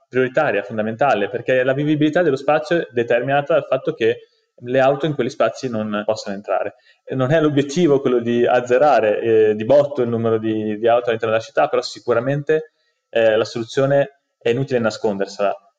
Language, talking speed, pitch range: Italian, 170 wpm, 115-145 Hz